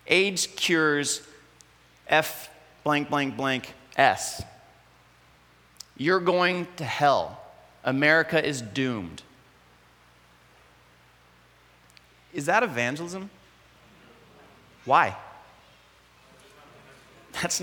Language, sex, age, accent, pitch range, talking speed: English, male, 30-49, American, 105-165 Hz, 65 wpm